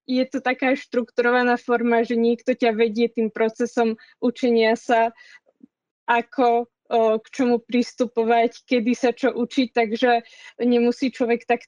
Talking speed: 135 wpm